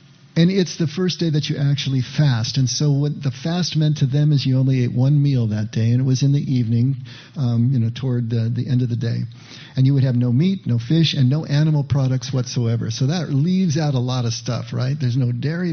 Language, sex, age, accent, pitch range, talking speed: English, male, 50-69, American, 120-140 Hz, 250 wpm